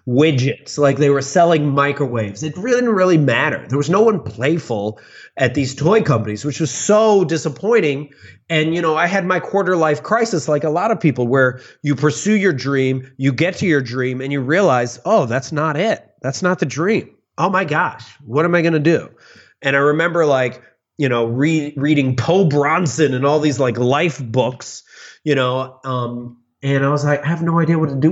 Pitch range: 120-155 Hz